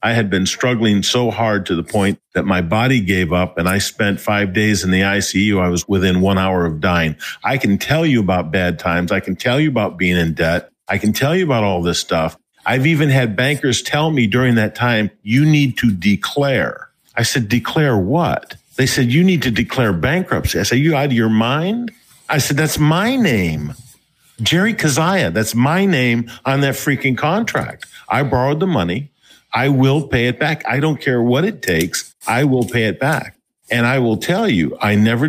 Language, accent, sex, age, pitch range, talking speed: English, American, male, 50-69, 100-140 Hz, 210 wpm